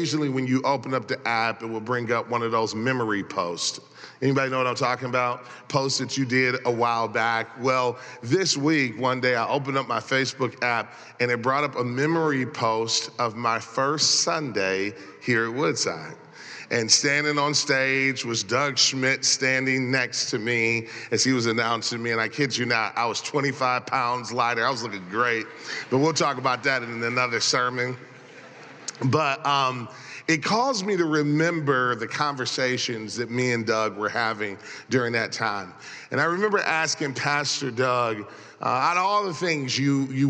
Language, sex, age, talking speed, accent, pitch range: English, male, 40-59, 185 wpm, American, 115-135 Hz